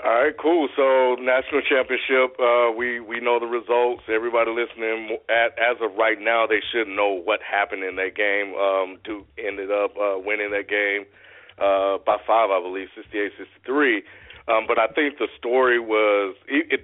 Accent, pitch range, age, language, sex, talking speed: American, 100-125 Hz, 40-59, English, male, 180 wpm